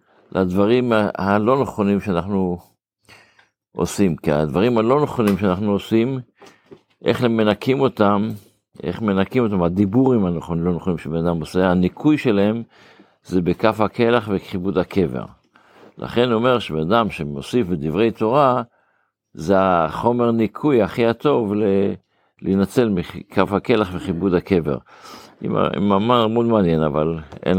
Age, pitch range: 60-79, 85-110 Hz